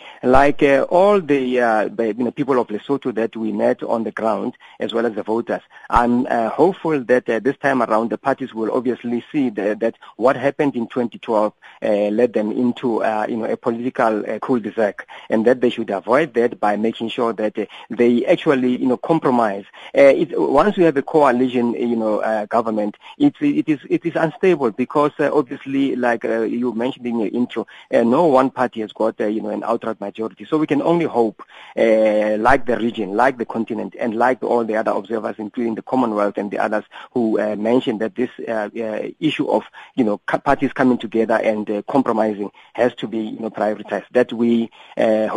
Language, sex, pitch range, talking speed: English, male, 110-130 Hz, 210 wpm